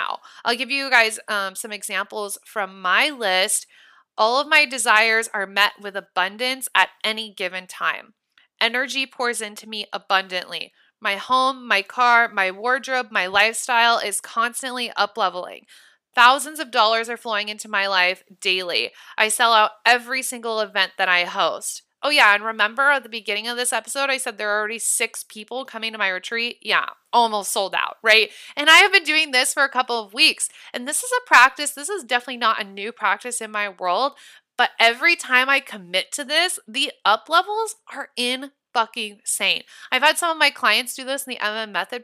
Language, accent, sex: English, American, female